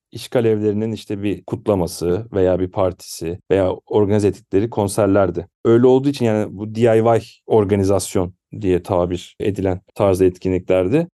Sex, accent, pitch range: male, native, 100-130 Hz